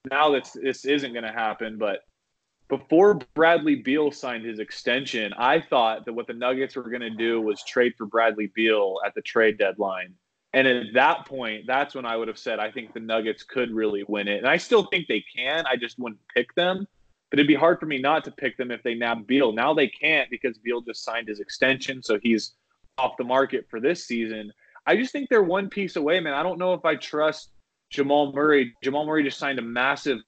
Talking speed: 230 wpm